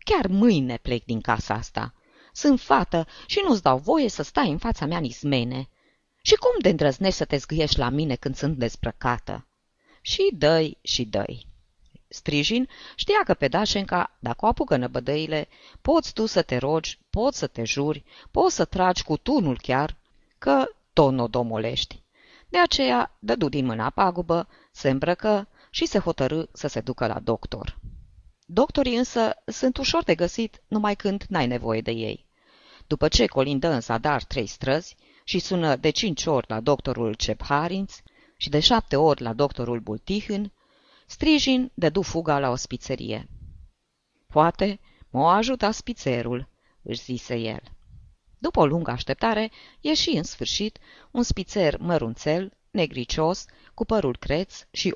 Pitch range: 125-200 Hz